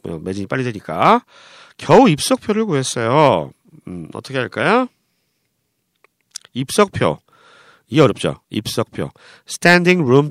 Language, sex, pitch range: Korean, male, 125-195 Hz